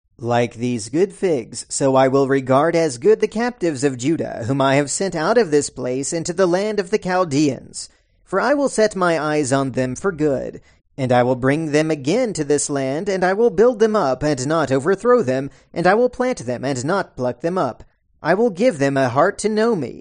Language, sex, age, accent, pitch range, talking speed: English, male, 40-59, American, 135-200 Hz, 230 wpm